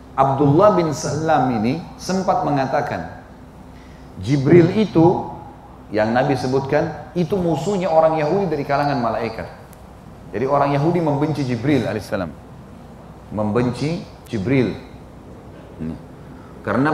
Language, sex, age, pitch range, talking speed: English, male, 30-49, 125-155 Hz, 100 wpm